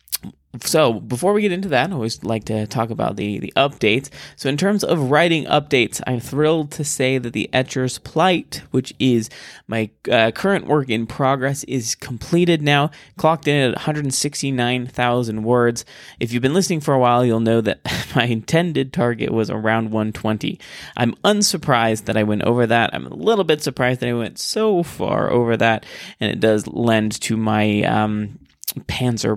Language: English